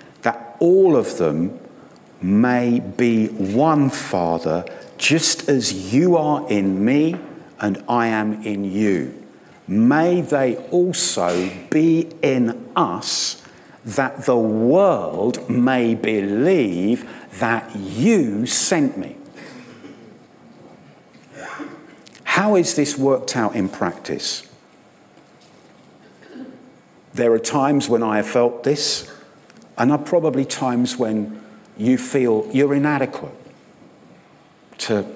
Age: 50-69